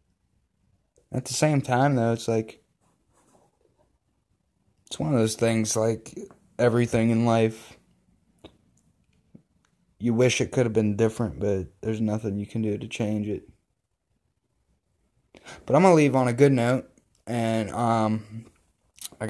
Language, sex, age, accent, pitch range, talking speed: English, male, 20-39, American, 105-125 Hz, 135 wpm